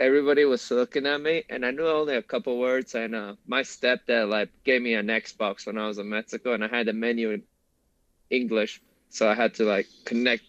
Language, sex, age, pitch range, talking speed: English, male, 20-39, 115-135 Hz, 225 wpm